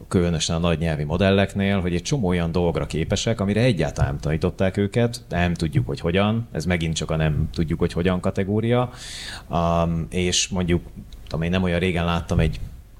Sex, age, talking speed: male, 30-49, 160 wpm